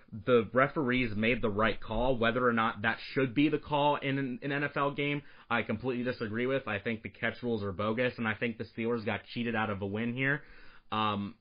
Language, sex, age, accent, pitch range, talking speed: English, male, 30-49, American, 110-140 Hz, 220 wpm